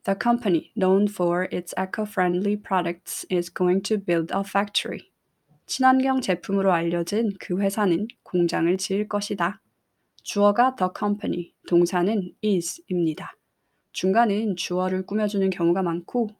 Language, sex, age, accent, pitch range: Korean, female, 20-39, native, 175-210 Hz